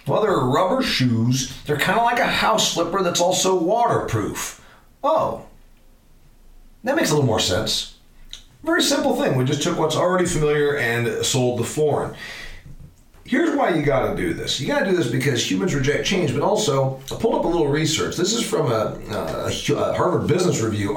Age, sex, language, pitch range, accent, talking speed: 40-59, male, English, 110-150 Hz, American, 185 wpm